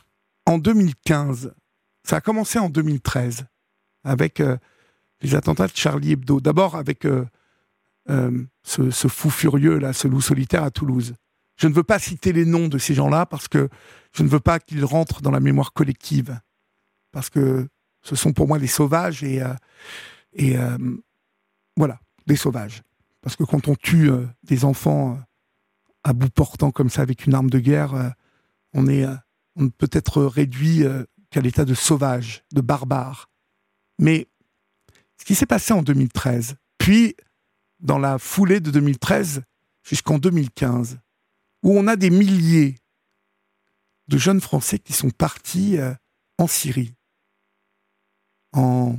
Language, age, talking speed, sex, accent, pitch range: French, 60-79, 155 wpm, male, French, 125-155 Hz